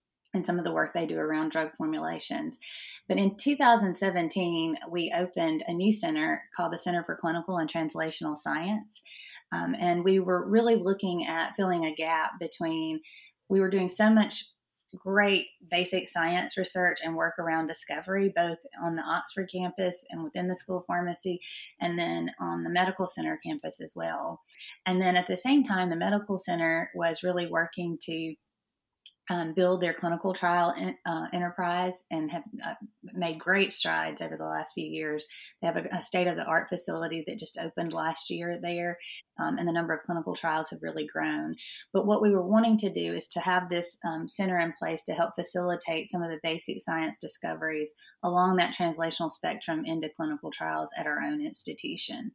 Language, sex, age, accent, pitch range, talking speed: English, female, 30-49, American, 165-185 Hz, 180 wpm